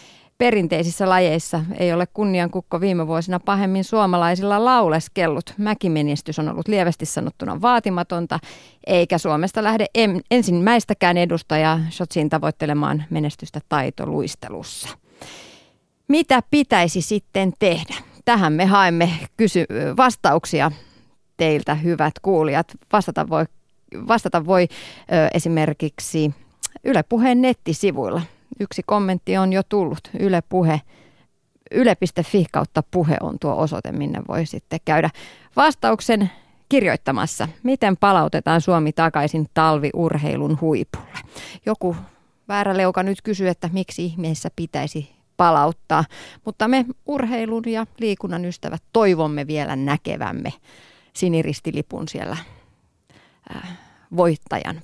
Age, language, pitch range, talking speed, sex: 30-49, Finnish, 160-205 Hz, 95 wpm, female